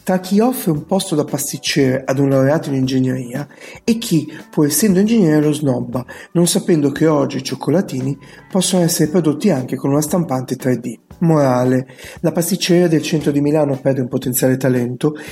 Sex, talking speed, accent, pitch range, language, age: male, 170 wpm, native, 135-180 Hz, Italian, 40-59